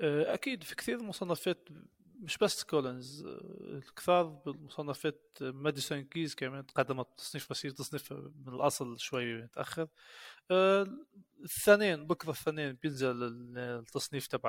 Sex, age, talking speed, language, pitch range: male, 30-49, 110 wpm, Arabic, 135-170 Hz